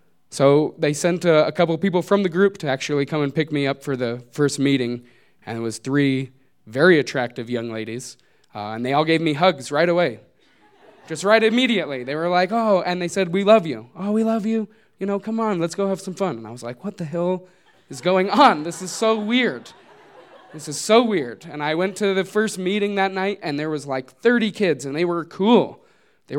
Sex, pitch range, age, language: male, 140-195 Hz, 20-39, English